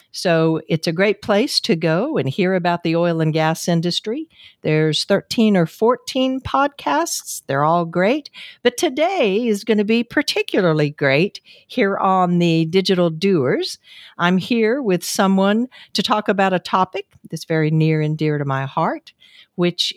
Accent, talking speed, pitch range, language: American, 160 wpm, 165-230 Hz, English